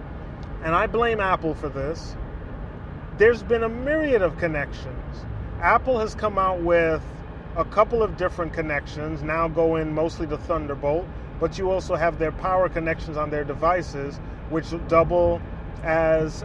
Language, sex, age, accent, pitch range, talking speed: English, male, 30-49, American, 145-175 Hz, 145 wpm